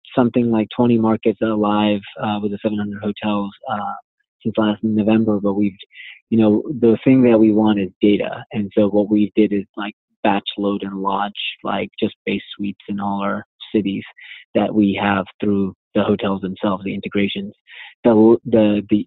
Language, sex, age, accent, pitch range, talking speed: English, male, 20-39, American, 100-110 Hz, 175 wpm